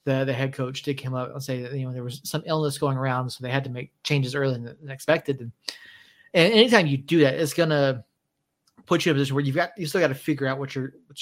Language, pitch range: English, 130-155 Hz